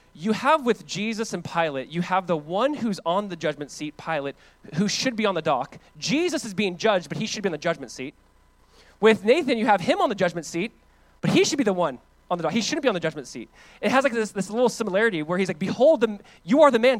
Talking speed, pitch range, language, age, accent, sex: 265 wpm, 155-225 Hz, English, 20-39, American, male